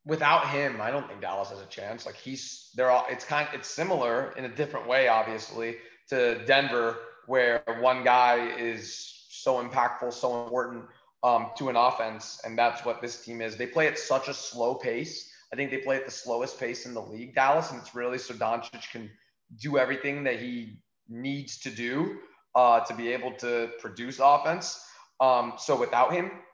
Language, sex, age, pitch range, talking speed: English, male, 30-49, 120-135 Hz, 195 wpm